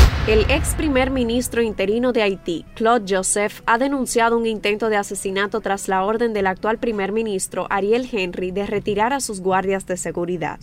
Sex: female